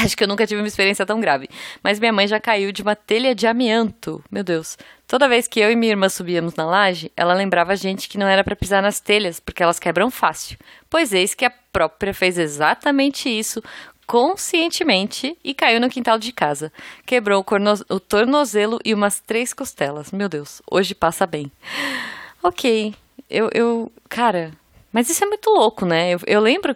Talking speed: 195 wpm